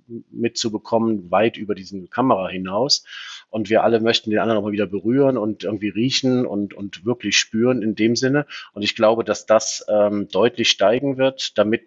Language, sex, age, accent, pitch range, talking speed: German, male, 40-59, German, 105-120 Hz, 180 wpm